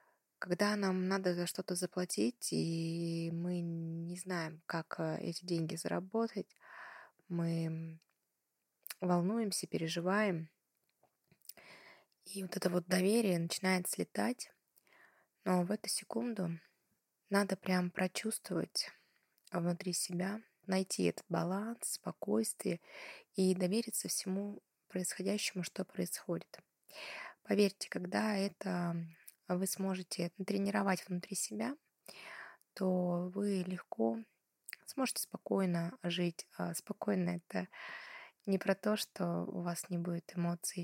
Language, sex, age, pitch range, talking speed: Russian, female, 20-39, 170-195 Hz, 100 wpm